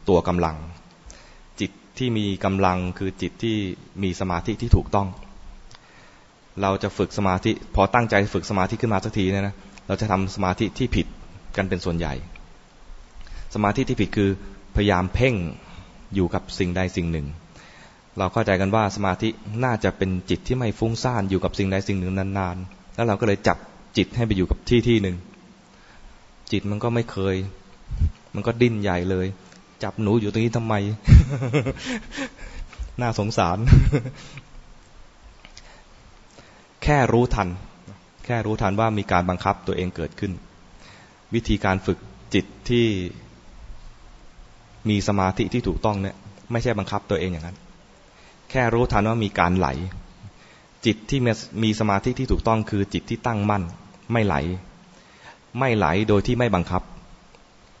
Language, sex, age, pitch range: English, male, 20-39, 95-115 Hz